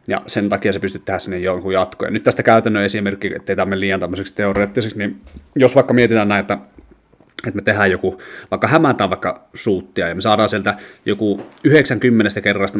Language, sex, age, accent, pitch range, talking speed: Finnish, male, 30-49, native, 95-110 Hz, 185 wpm